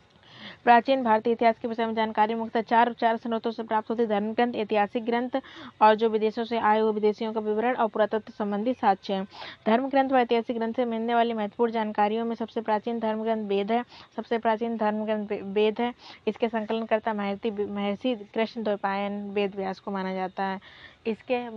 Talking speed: 185 wpm